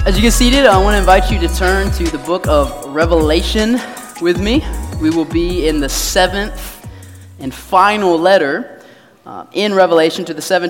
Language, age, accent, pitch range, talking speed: English, 20-39, American, 170-235 Hz, 185 wpm